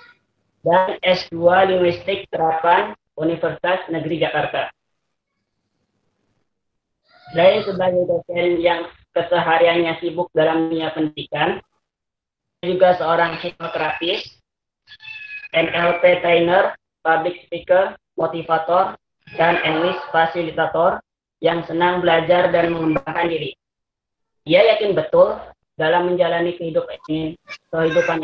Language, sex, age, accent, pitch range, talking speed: Indonesian, female, 20-39, native, 165-180 Hz, 85 wpm